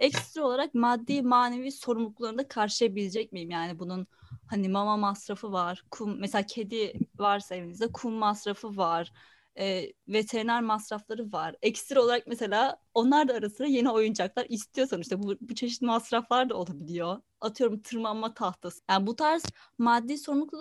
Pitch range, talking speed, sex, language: 195-255 Hz, 145 wpm, female, Turkish